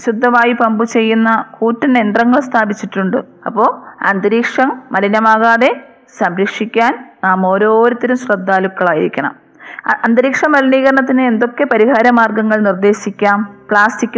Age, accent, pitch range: 20-39, native, 215-245 Hz